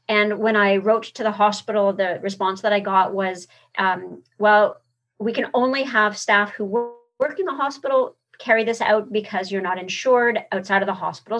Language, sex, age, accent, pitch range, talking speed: English, female, 40-59, American, 200-240 Hz, 190 wpm